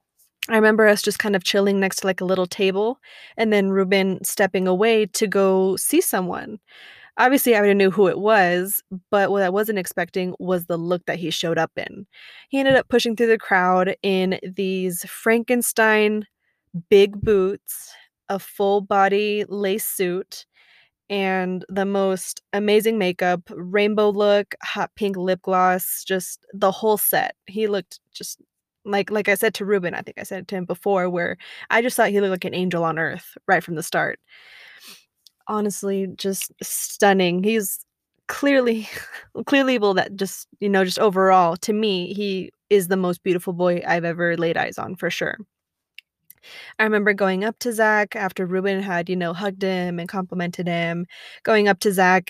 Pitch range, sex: 185-220 Hz, female